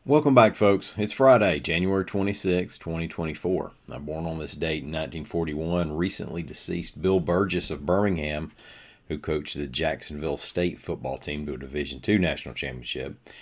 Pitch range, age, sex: 75-95 Hz, 40-59, male